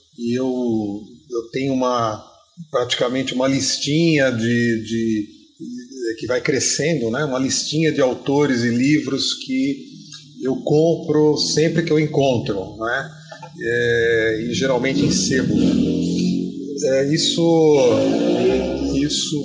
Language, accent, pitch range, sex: Portuguese, Brazilian, 125-155 Hz, male